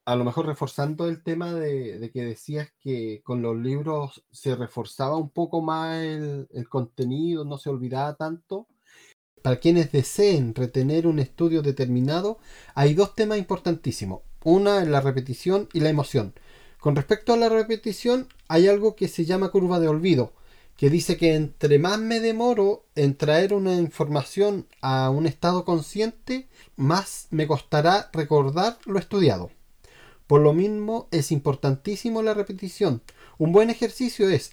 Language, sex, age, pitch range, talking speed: Spanish, male, 30-49, 140-205 Hz, 155 wpm